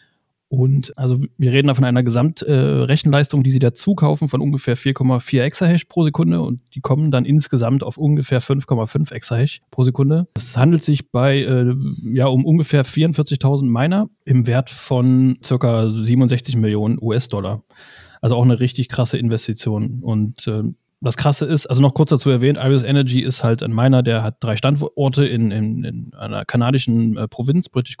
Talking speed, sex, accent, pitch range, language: 175 wpm, male, German, 120-140 Hz, German